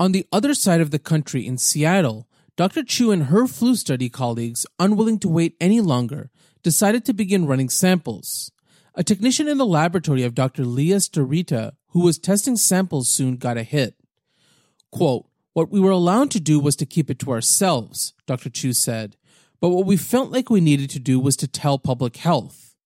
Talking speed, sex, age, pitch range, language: 190 wpm, male, 30-49, 135-190 Hz, English